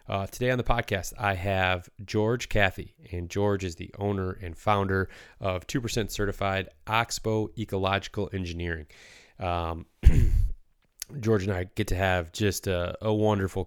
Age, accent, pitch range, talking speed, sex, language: 20-39, American, 90-105 Hz, 150 wpm, male, English